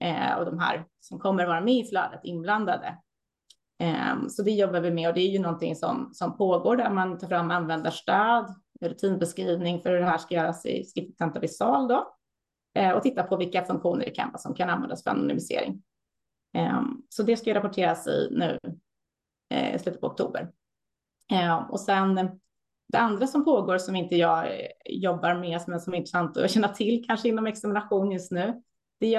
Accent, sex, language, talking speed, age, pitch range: native, female, Swedish, 175 wpm, 30-49, 175-230 Hz